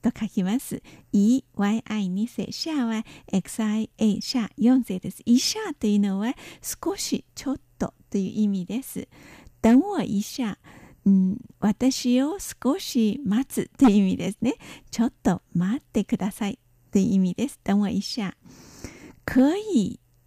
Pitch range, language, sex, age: 205-255 Hz, Japanese, female, 50-69